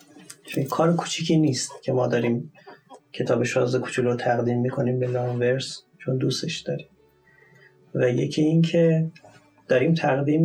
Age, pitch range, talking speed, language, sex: 30-49, 130-160 Hz, 140 wpm, Persian, male